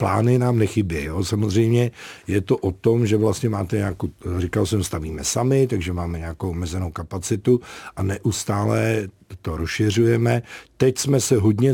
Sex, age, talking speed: male, 50-69, 150 wpm